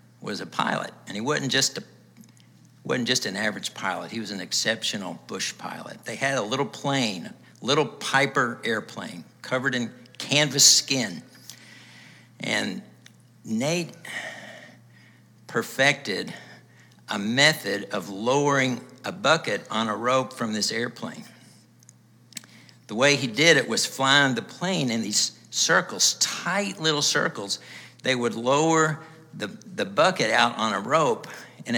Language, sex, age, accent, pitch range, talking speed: English, male, 60-79, American, 115-140 Hz, 140 wpm